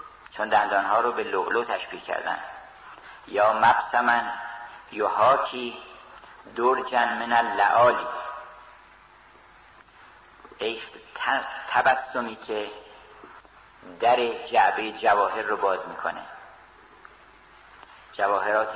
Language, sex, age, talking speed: Persian, male, 50-69, 75 wpm